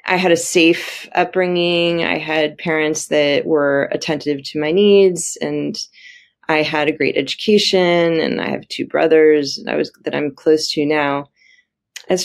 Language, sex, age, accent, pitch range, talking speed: English, female, 30-49, American, 140-175 Hz, 165 wpm